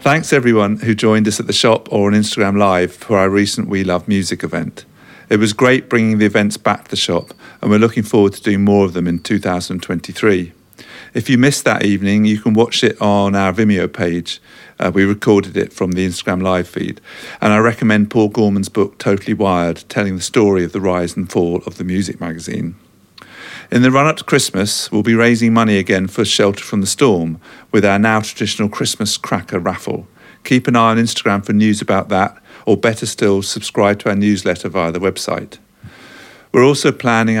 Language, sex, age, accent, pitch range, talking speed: English, male, 50-69, British, 95-110 Hz, 200 wpm